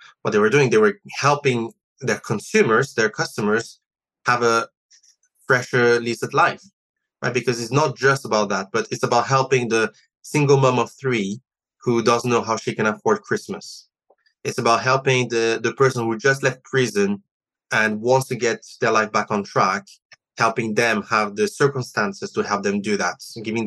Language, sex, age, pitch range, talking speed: English, male, 20-39, 110-135 Hz, 175 wpm